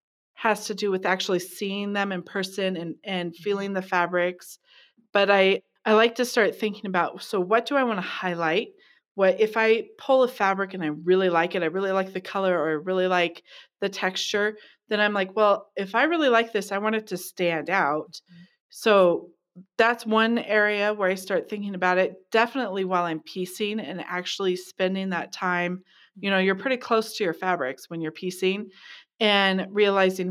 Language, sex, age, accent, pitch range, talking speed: English, female, 30-49, American, 180-210 Hz, 195 wpm